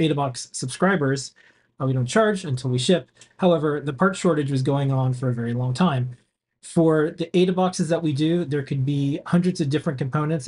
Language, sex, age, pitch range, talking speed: English, male, 30-49, 135-170 Hz, 195 wpm